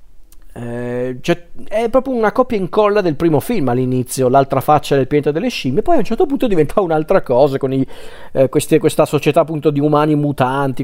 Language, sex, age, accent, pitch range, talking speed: Italian, male, 40-59, native, 135-160 Hz, 195 wpm